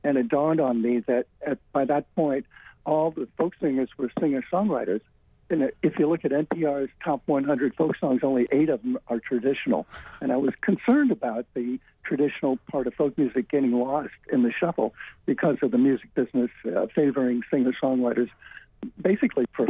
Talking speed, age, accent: 175 wpm, 60-79, American